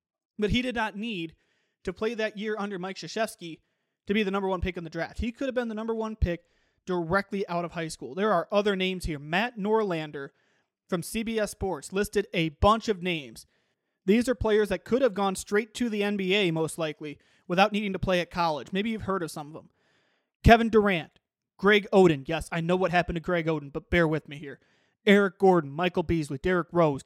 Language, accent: English, American